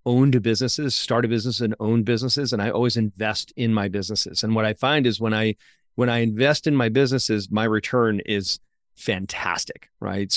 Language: English